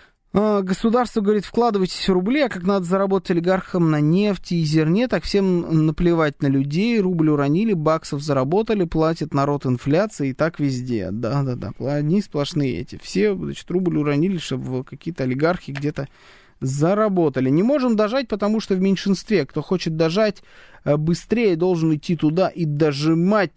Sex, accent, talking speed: male, native, 150 wpm